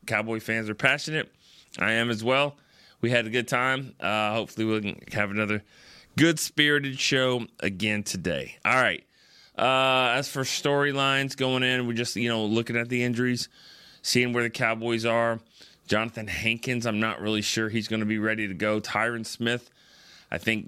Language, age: English, 30-49